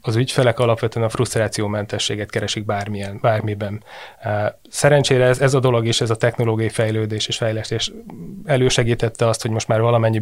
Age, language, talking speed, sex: 20-39, Hungarian, 155 wpm, male